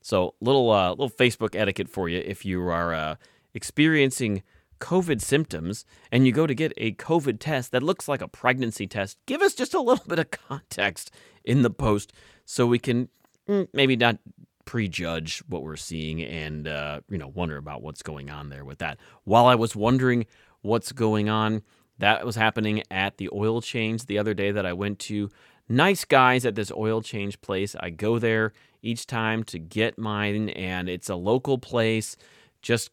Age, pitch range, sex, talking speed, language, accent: 30-49, 95-125 Hz, male, 185 wpm, English, American